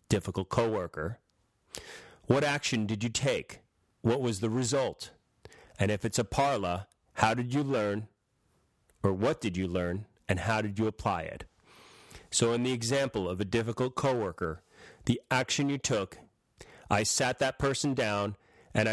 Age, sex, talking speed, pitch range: 40-59, male, 155 wpm, 100-115 Hz